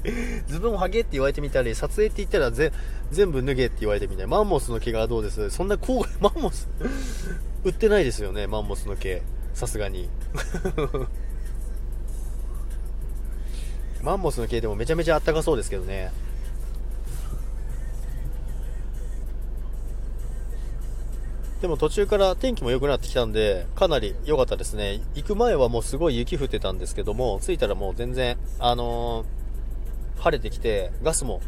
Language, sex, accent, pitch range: Japanese, male, native, 120-140 Hz